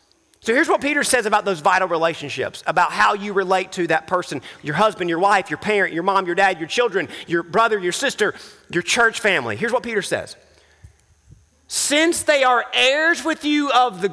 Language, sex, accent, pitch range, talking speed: English, male, American, 215-275 Hz, 200 wpm